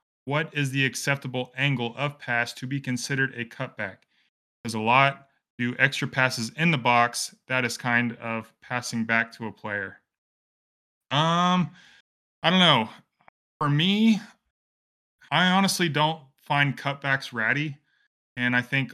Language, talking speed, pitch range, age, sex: English, 145 wpm, 115-135 Hz, 20-39, male